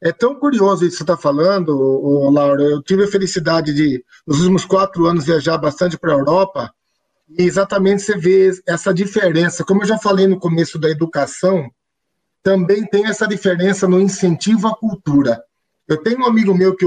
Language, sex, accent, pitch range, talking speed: Portuguese, male, Brazilian, 160-210 Hz, 180 wpm